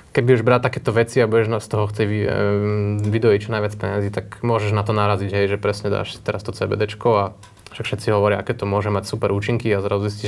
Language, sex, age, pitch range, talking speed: Slovak, male, 20-39, 100-115 Hz, 215 wpm